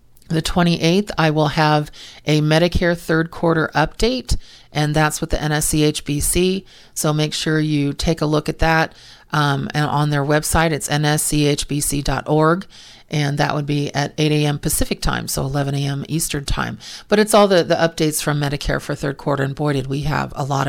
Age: 40-59